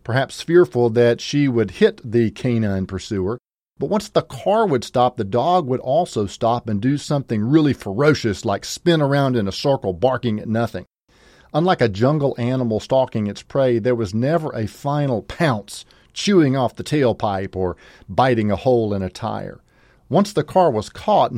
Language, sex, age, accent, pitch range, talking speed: English, male, 40-59, American, 105-140 Hz, 175 wpm